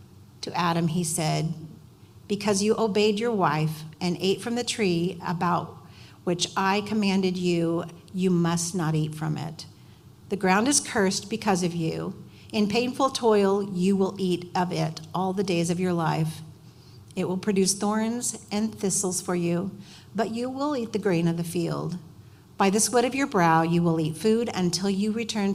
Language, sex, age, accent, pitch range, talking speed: English, female, 50-69, American, 165-205 Hz, 180 wpm